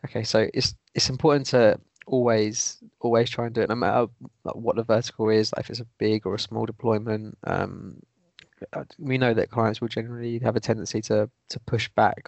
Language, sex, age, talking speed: English, male, 20-39, 200 wpm